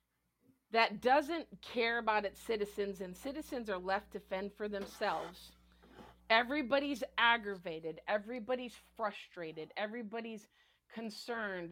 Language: English